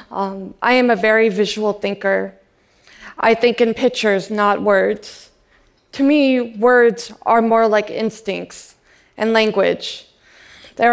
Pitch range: 195-230 Hz